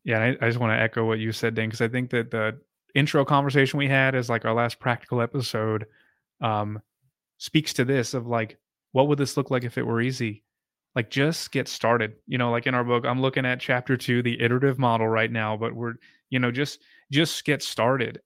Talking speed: 225 wpm